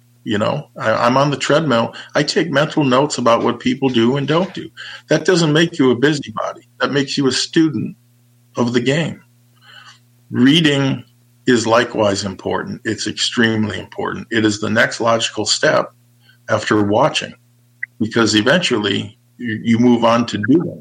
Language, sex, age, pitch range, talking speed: English, male, 50-69, 115-130 Hz, 155 wpm